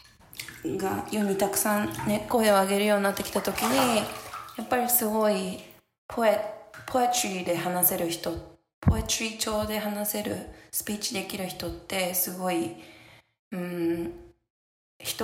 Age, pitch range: 20-39, 170-205 Hz